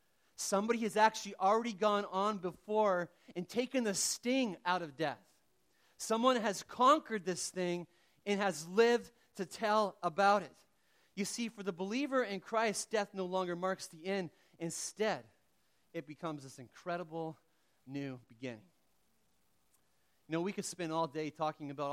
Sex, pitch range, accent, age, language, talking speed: male, 140-185 Hz, American, 30-49, English, 150 wpm